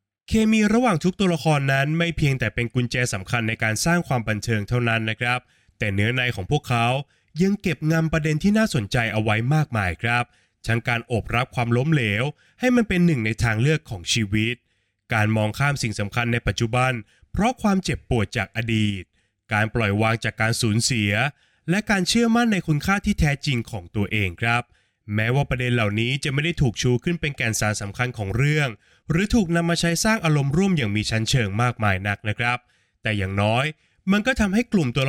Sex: male